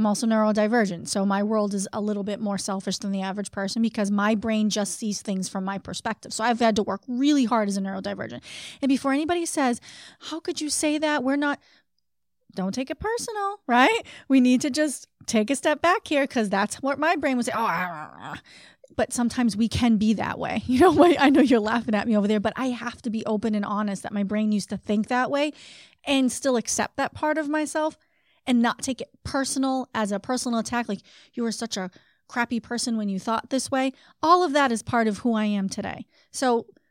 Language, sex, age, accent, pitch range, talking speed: English, female, 30-49, American, 215-275 Hz, 225 wpm